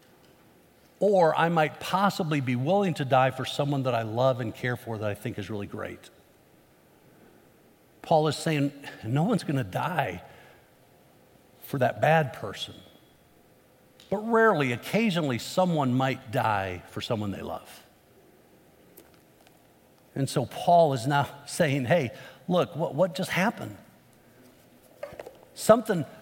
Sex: male